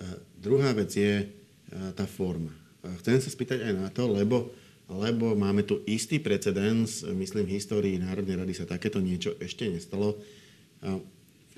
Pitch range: 95-110 Hz